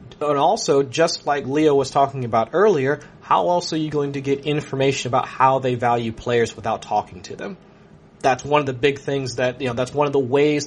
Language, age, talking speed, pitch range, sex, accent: English, 30-49, 225 wpm, 125-155 Hz, male, American